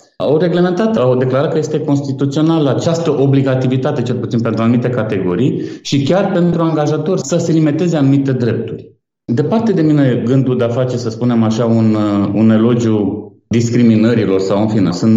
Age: 30-49